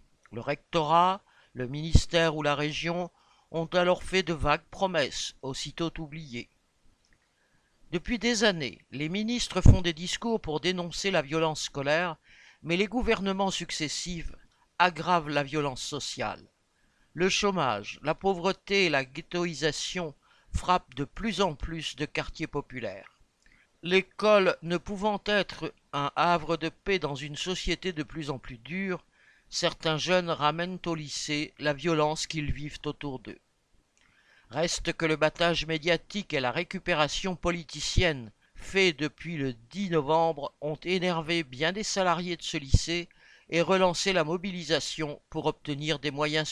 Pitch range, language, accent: 150-180 Hz, French, French